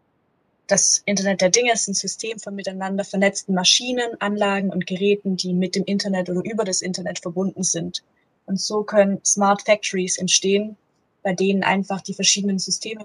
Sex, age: female, 20-39